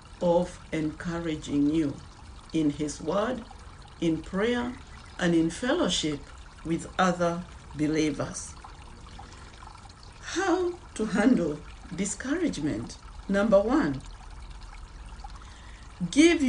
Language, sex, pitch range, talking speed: English, female, 150-240 Hz, 75 wpm